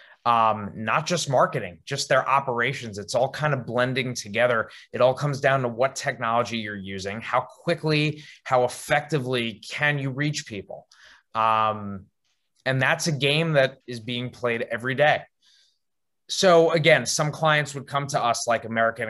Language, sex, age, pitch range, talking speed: English, male, 20-39, 115-150 Hz, 160 wpm